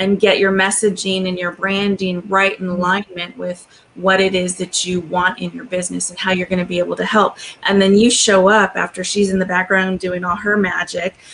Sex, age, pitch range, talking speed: female, 30-49, 185-230 Hz, 220 wpm